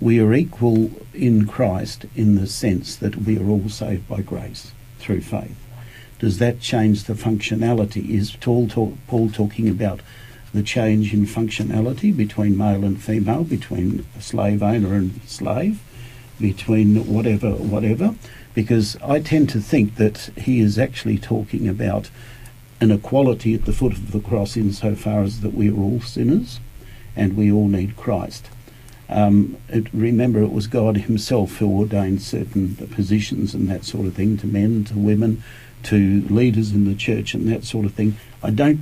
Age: 60-79